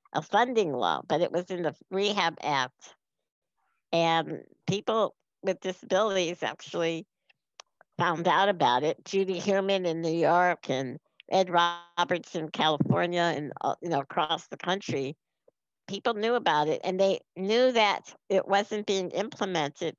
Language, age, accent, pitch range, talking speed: English, 60-79, American, 160-195 Hz, 135 wpm